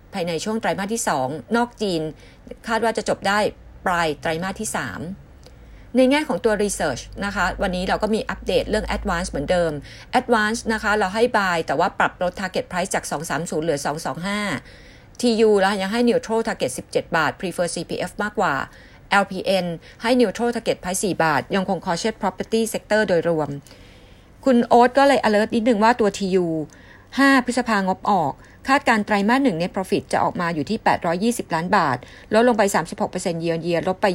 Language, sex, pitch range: Thai, female, 170-225 Hz